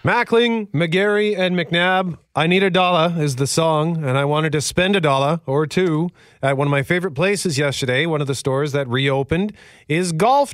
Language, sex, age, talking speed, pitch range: English, male, 40-59, 200 wpm, 110-145 Hz